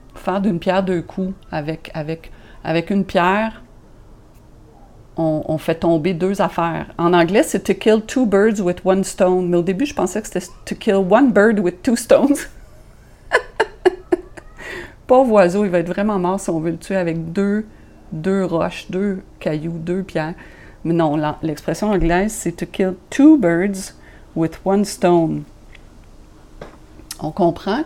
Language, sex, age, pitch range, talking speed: French, female, 40-59, 165-205 Hz, 170 wpm